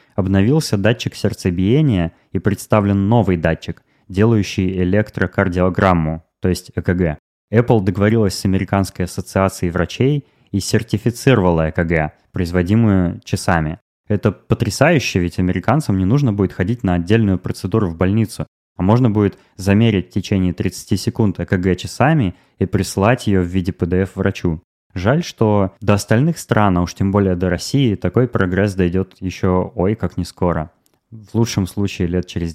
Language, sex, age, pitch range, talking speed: Russian, male, 20-39, 90-110 Hz, 140 wpm